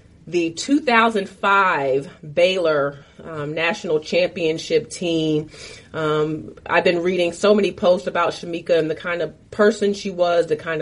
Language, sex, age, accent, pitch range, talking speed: English, female, 30-49, American, 155-185 Hz, 140 wpm